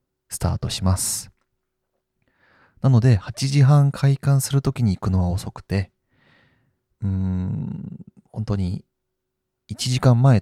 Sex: male